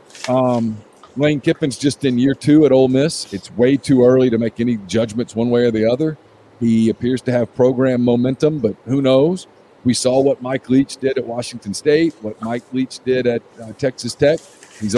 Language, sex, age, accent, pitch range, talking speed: English, male, 50-69, American, 120-140 Hz, 200 wpm